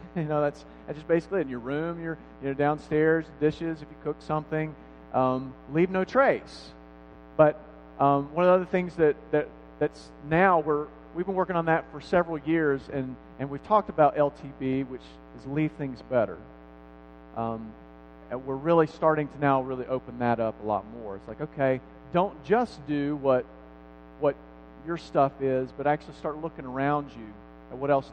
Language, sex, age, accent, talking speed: English, male, 40-59, American, 185 wpm